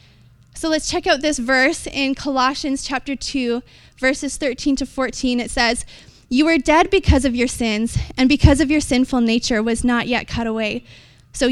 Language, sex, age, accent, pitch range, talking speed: English, female, 20-39, American, 245-300 Hz, 180 wpm